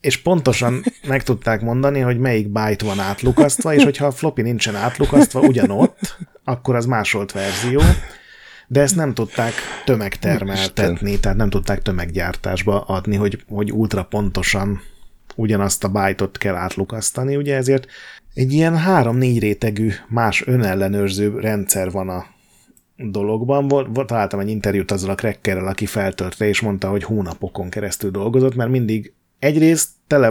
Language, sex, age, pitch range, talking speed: Hungarian, male, 30-49, 100-130 Hz, 140 wpm